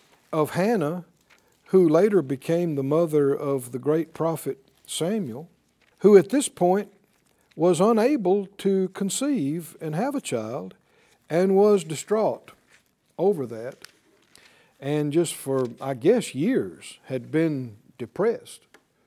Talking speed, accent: 120 wpm, American